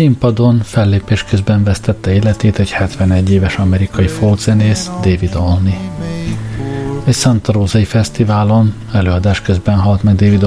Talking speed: 115 wpm